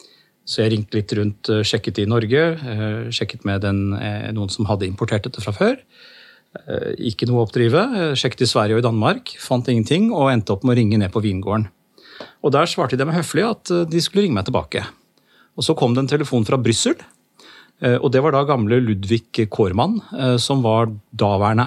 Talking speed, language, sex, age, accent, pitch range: 185 wpm, English, male, 30-49, Norwegian, 105-130 Hz